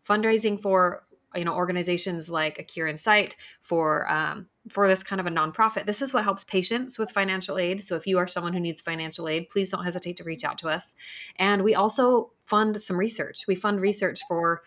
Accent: American